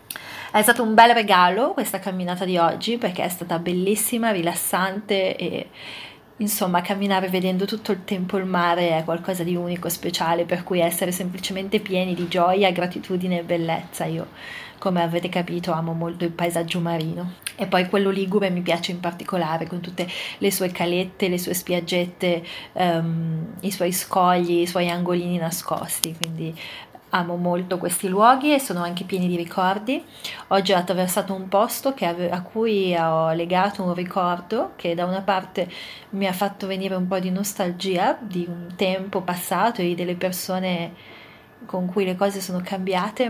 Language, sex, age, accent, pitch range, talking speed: Italian, female, 30-49, native, 175-200 Hz, 160 wpm